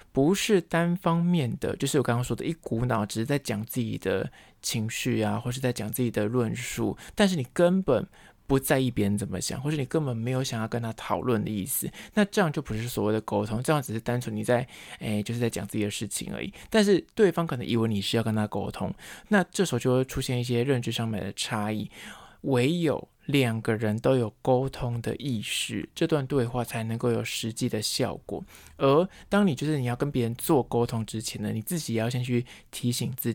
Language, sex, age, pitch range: Chinese, male, 20-39, 115-145 Hz